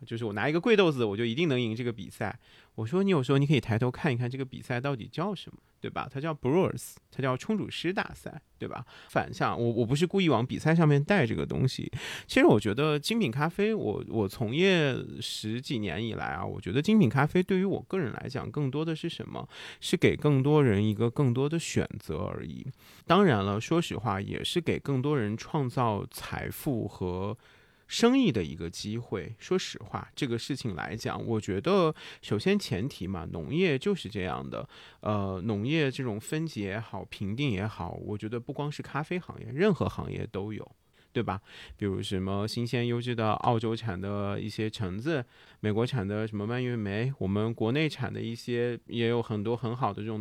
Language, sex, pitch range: Chinese, male, 110-155 Hz